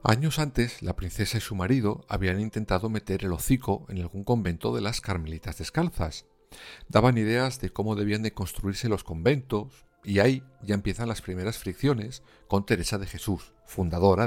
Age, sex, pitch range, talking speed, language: 50-69, male, 90-120 Hz, 170 wpm, Spanish